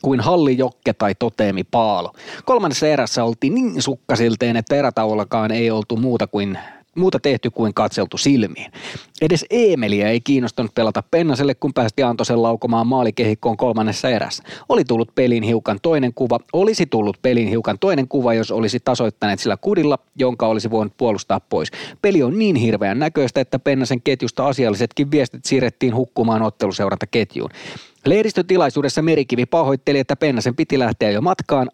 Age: 30-49